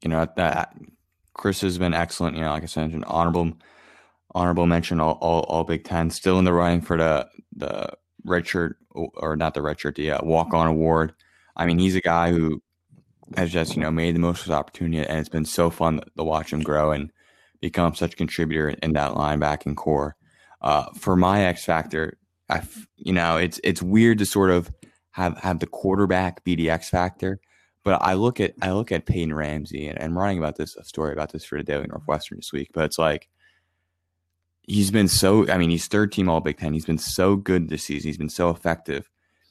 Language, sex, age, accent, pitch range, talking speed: English, male, 20-39, American, 80-90 Hz, 220 wpm